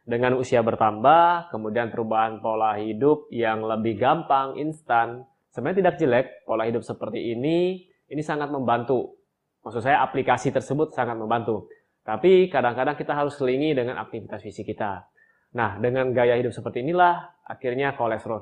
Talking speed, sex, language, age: 145 wpm, male, Indonesian, 20-39